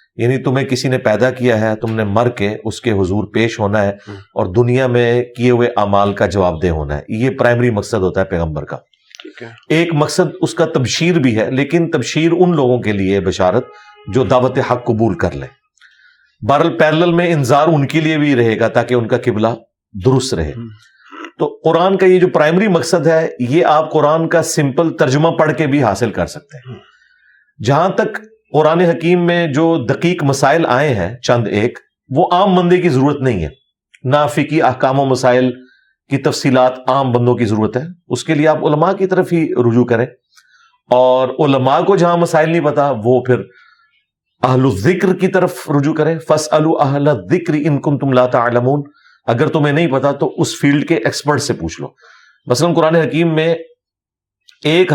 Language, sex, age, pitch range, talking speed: Urdu, male, 40-59, 120-160 Hz, 185 wpm